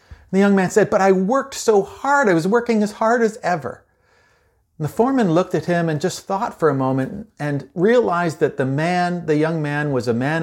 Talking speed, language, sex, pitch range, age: 220 wpm, English, male, 115-175 Hz, 40-59